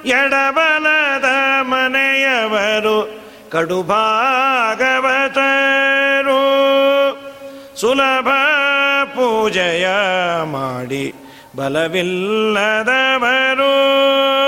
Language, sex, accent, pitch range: Kannada, male, native, 220-275 Hz